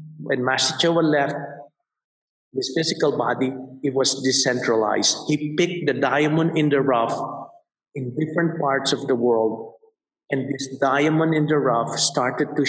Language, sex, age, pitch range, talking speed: English, male, 50-69, 135-170 Hz, 140 wpm